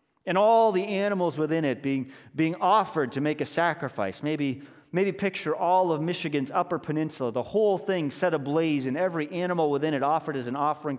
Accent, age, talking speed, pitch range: American, 30-49, 190 wpm, 125-165 Hz